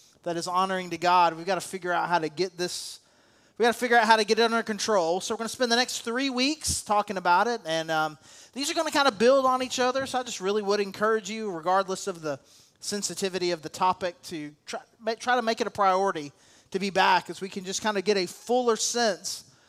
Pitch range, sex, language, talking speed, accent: 175-220 Hz, male, English, 255 wpm, American